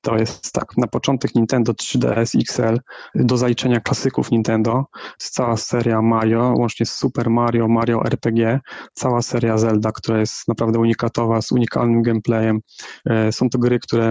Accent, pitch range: native, 115-125 Hz